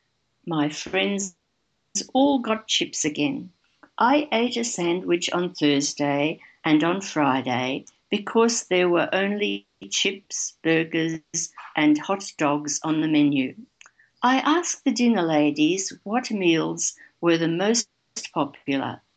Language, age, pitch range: English, 60-79, 160-225 Hz